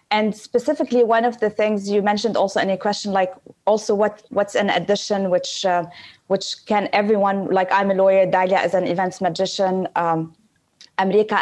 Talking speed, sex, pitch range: 180 wpm, female, 190-225 Hz